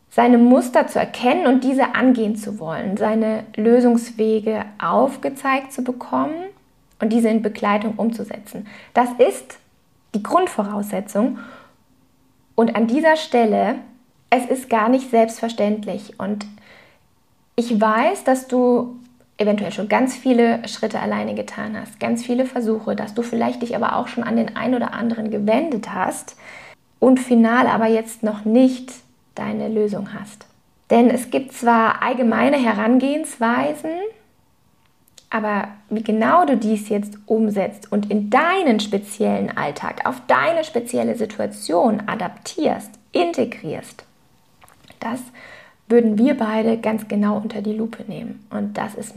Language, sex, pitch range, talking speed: German, female, 215-250 Hz, 130 wpm